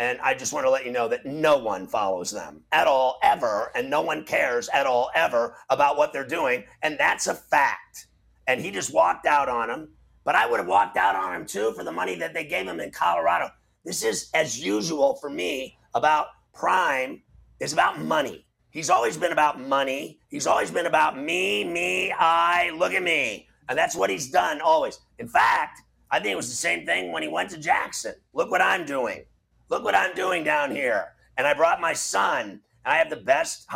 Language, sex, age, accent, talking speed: English, male, 30-49, American, 210 wpm